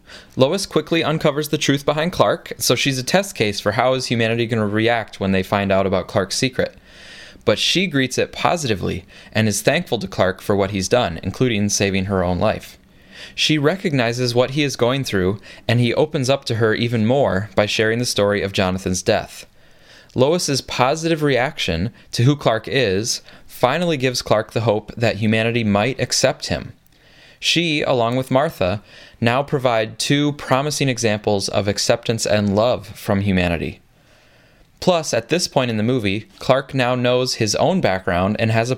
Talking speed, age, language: 180 wpm, 20-39, English